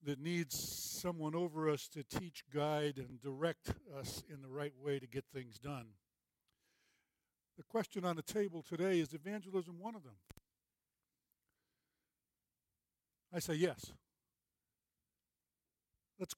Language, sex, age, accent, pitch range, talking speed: English, male, 60-79, American, 140-180 Hz, 125 wpm